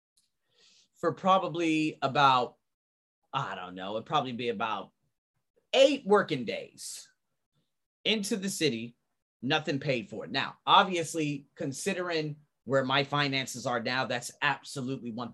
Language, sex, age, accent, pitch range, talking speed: English, male, 30-49, American, 130-170 Hz, 115 wpm